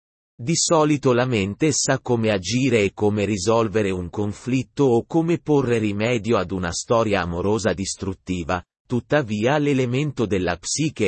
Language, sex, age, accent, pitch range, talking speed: Italian, male, 30-49, native, 105-140 Hz, 135 wpm